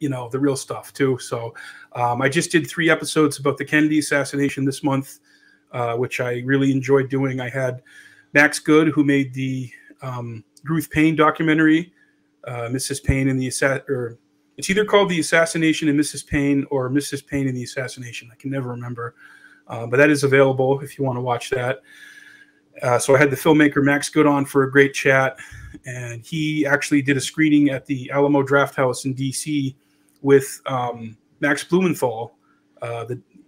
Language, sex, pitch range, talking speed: English, male, 130-150 Hz, 185 wpm